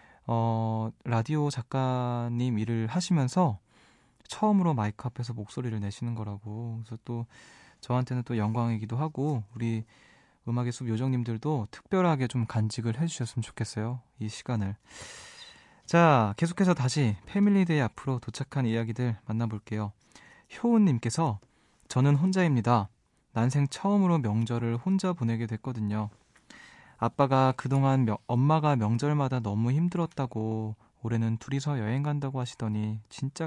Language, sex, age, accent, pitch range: Korean, male, 20-39, native, 110-140 Hz